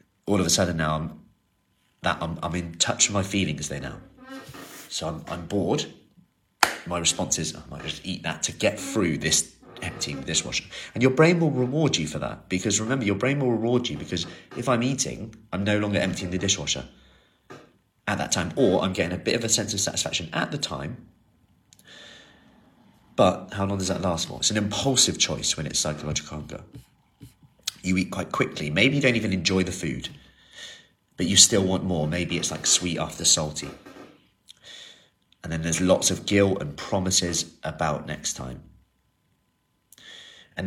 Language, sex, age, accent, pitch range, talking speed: English, male, 30-49, British, 85-115 Hz, 195 wpm